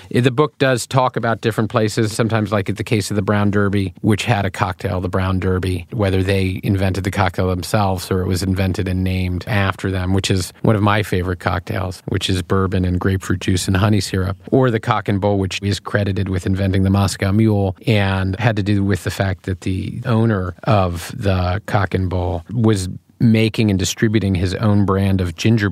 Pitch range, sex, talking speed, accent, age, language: 95-105 Hz, male, 210 wpm, American, 40-59, English